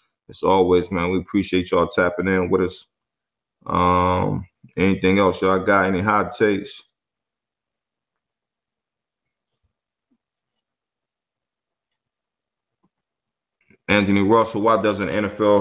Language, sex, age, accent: English, male, 30-49, American